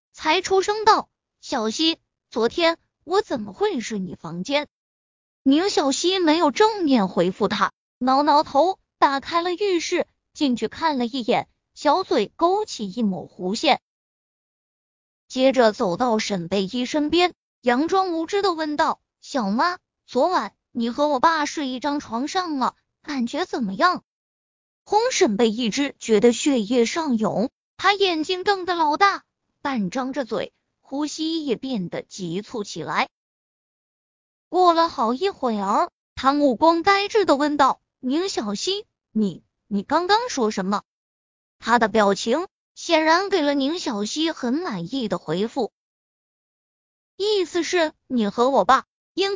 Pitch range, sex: 230-340 Hz, female